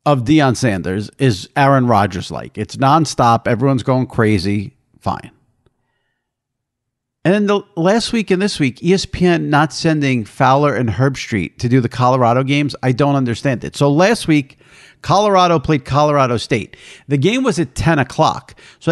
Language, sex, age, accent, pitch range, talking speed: English, male, 50-69, American, 130-175 Hz, 160 wpm